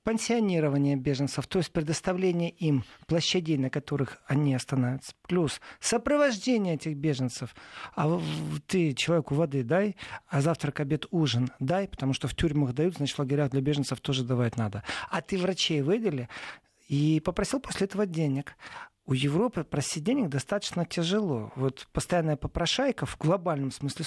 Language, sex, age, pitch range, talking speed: Russian, male, 40-59, 135-180 Hz, 145 wpm